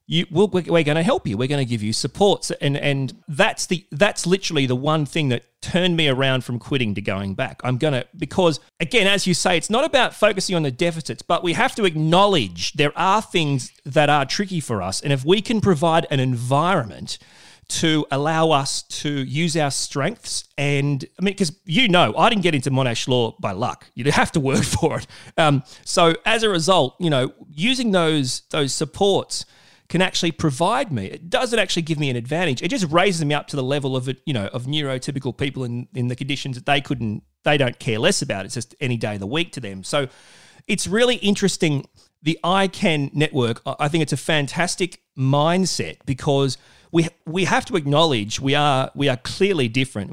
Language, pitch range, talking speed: English, 125-170 Hz, 210 wpm